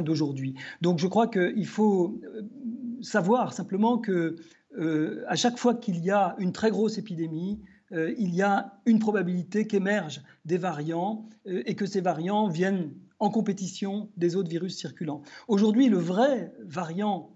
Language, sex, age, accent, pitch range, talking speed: French, male, 50-69, French, 180-230 Hz, 150 wpm